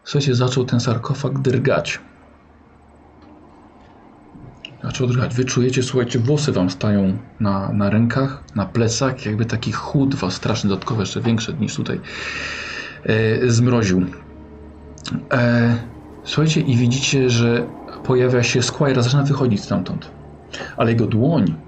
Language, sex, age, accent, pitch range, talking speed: Polish, male, 40-59, native, 95-125 Hz, 125 wpm